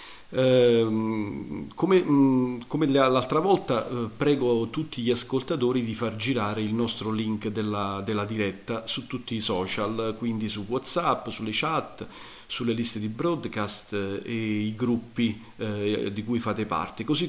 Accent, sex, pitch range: native, male, 105-130 Hz